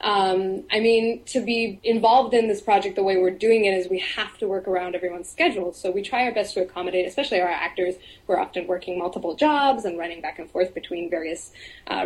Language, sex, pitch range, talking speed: English, female, 185-225 Hz, 230 wpm